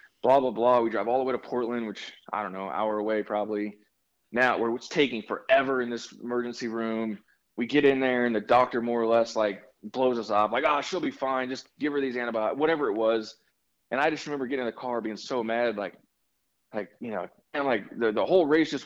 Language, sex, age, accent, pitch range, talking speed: English, male, 20-39, American, 110-145 Hz, 245 wpm